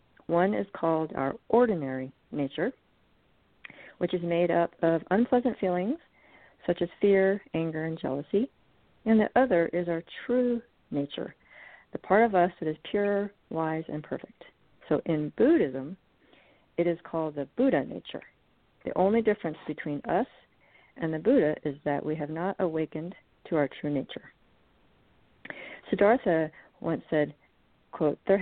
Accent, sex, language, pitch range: American, female, English, 155-195 Hz